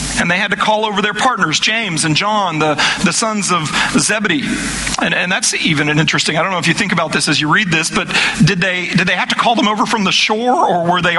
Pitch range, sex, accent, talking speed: 175-215 Hz, male, American, 270 wpm